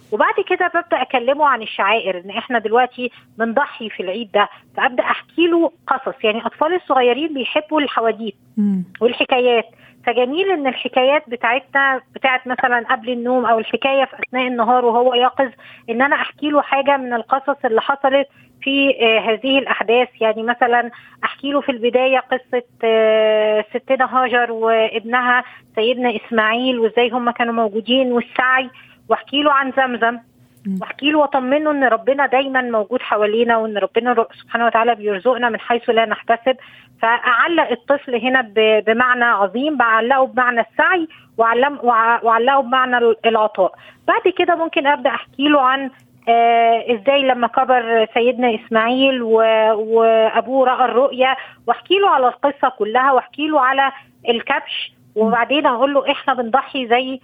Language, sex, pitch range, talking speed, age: Arabic, female, 230-270 Hz, 125 wpm, 20-39